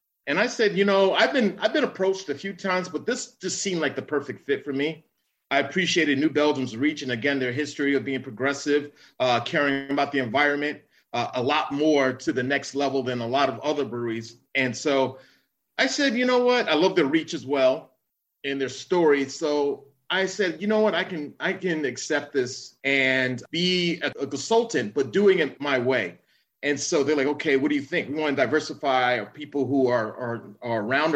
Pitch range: 135-165 Hz